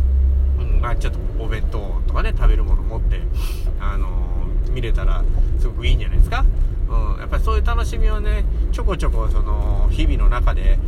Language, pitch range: Japanese, 65-90 Hz